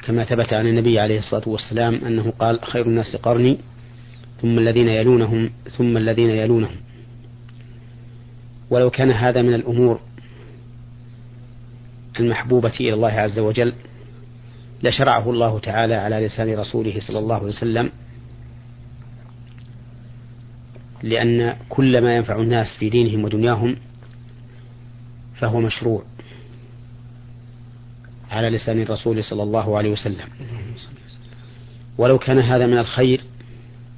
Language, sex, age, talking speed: Arabic, male, 40-59, 105 wpm